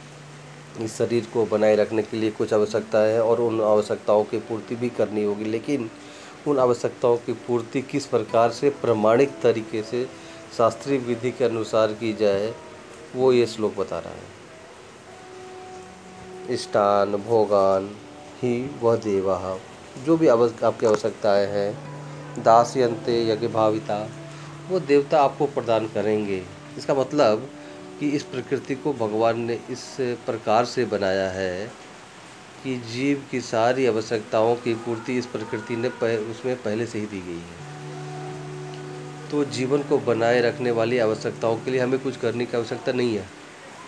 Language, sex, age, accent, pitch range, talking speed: Hindi, male, 30-49, native, 105-130 Hz, 145 wpm